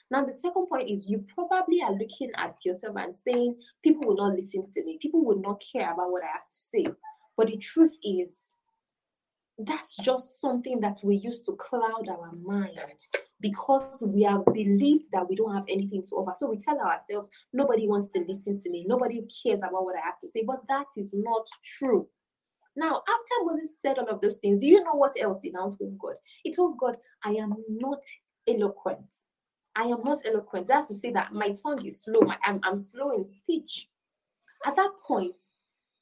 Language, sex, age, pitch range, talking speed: English, female, 20-39, 200-310 Hz, 205 wpm